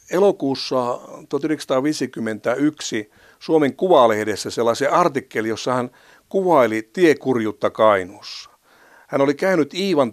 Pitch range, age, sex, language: 125-170 Hz, 60-79, male, Finnish